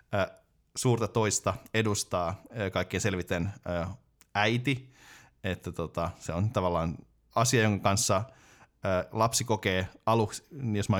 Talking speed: 105 wpm